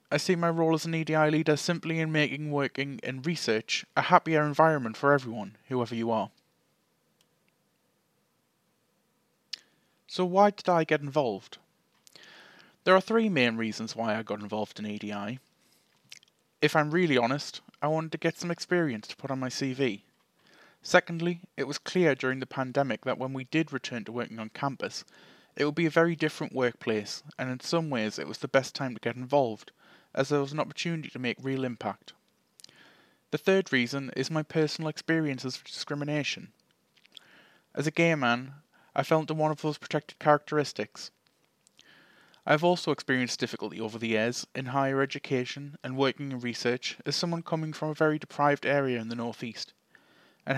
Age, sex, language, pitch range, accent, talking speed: 20-39, male, English, 125-160 Hz, British, 175 wpm